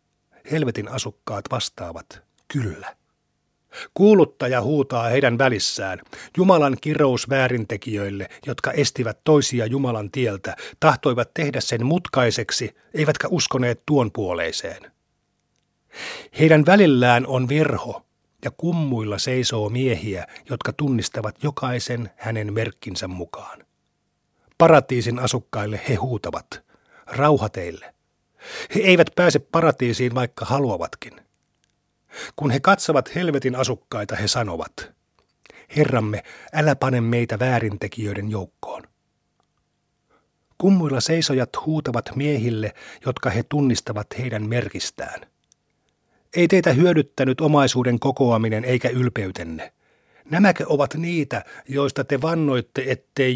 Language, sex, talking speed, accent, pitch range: Finnish, male, 95 wpm, native, 115-145 Hz